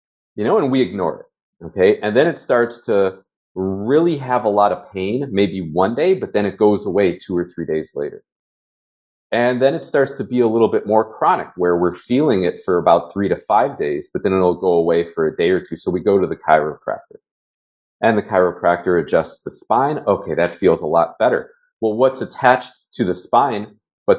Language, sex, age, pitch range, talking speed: English, male, 30-49, 90-130 Hz, 215 wpm